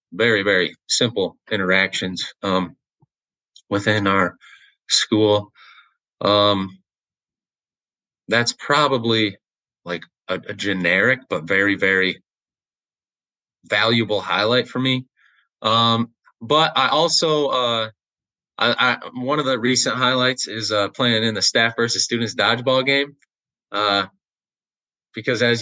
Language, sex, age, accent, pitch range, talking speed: English, male, 20-39, American, 105-140 Hz, 110 wpm